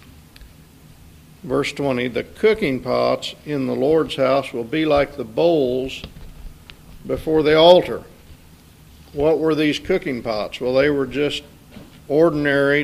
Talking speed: 125 wpm